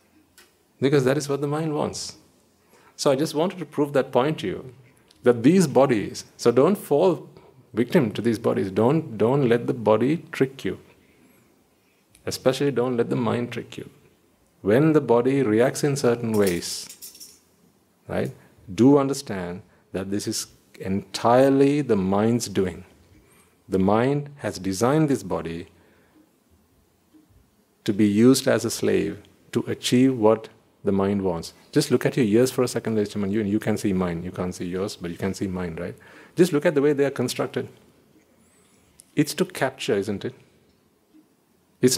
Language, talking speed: English, 160 wpm